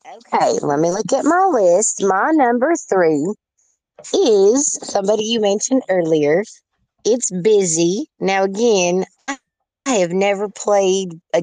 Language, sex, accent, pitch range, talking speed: English, female, American, 155-200 Hz, 120 wpm